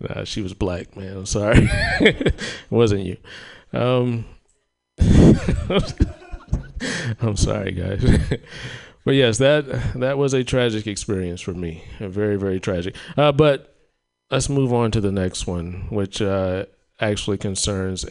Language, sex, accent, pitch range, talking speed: English, male, American, 95-120 Hz, 140 wpm